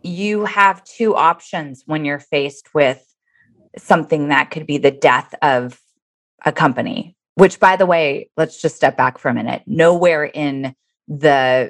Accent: American